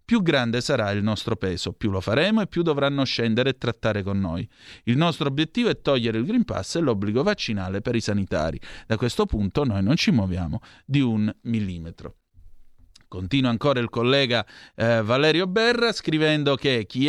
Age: 30-49